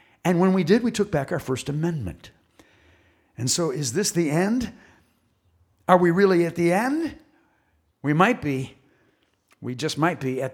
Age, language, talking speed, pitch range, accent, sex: 60-79, English, 170 wpm, 125-185 Hz, American, male